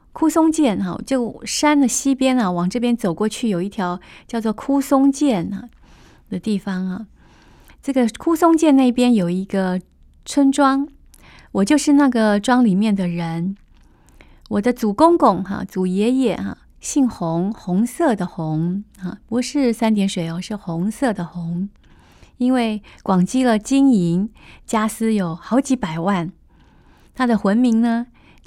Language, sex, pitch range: Chinese, female, 190-245 Hz